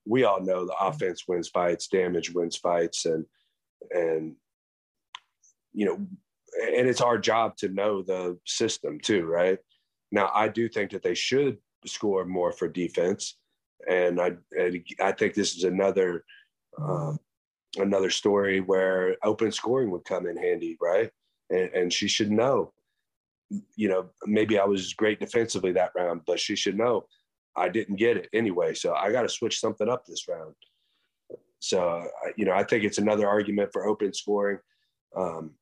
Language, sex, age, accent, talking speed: English, male, 30-49, American, 165 wpm